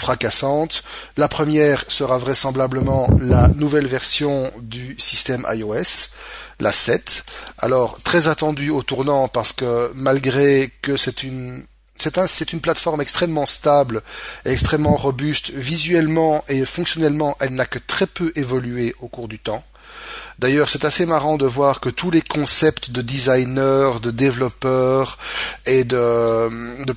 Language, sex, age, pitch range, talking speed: French, male, 30-49, 120-150 Hz, 140 wpm